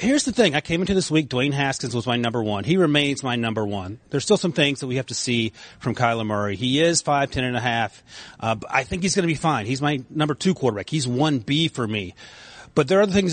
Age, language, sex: 30-49, English, male